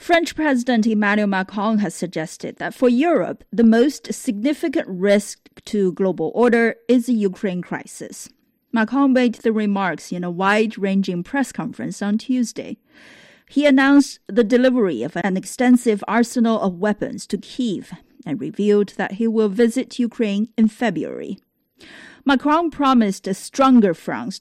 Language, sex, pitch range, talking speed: English, female, 190-250 Hz, 140 wpm